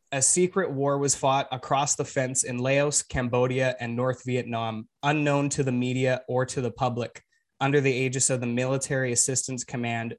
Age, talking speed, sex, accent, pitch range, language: 20-39, 175 wpm, male, American, 125-145 Hz, English